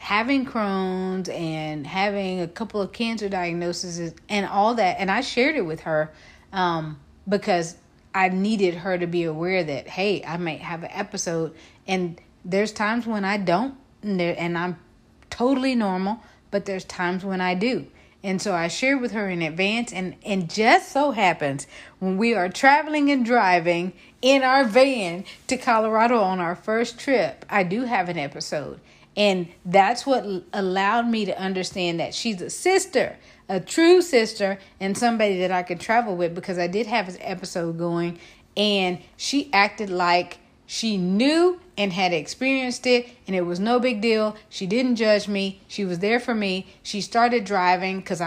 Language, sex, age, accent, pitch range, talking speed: English, female, 40-59, American, 180-230 Hz, 175 wpm